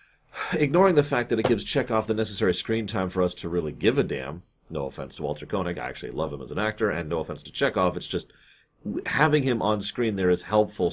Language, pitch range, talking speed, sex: English, 90-115 Hz, 240 wpm, male